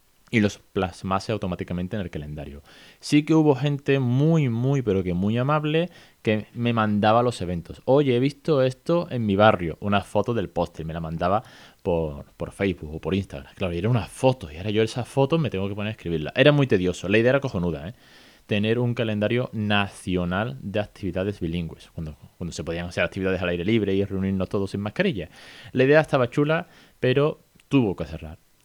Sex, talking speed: male, 195 wpm